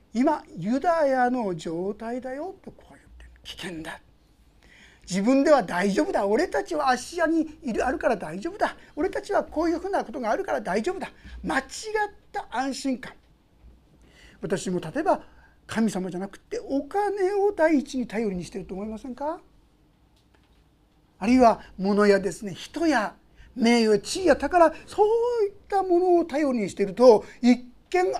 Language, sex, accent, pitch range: Japanese, male, native, 205-325 Hz